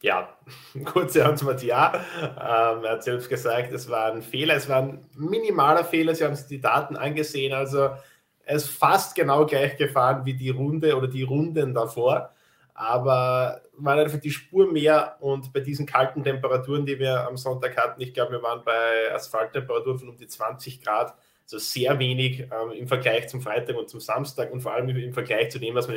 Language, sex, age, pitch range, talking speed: German, male, 20-39, 115-140 Hz, 200 wpm